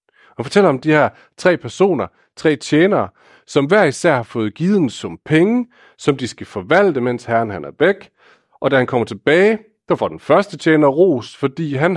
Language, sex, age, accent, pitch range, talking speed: Danish, male, 40-59, native, 115-170 Hz, 195 wpm